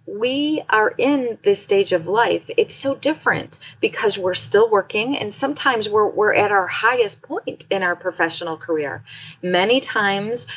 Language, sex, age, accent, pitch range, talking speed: English, female, 40-59, American, 150-245 Hz, 160 wpm